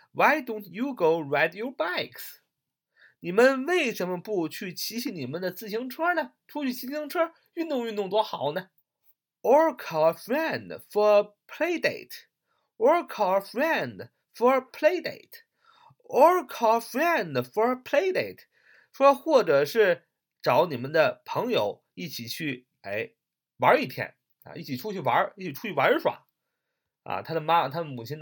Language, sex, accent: Chinese, male, native